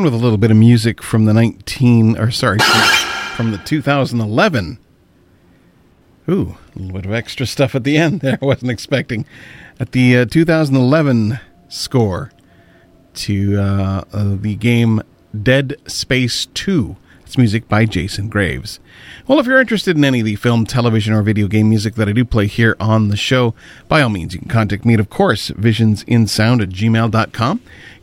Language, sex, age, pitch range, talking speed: English, male, 40-59, 100-140 Hz, 175 wpm